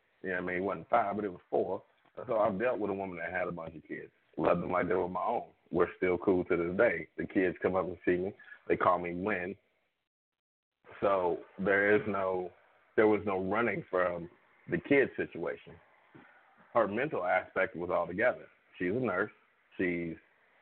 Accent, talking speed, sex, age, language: American, 195 wpm, male, 40-59, English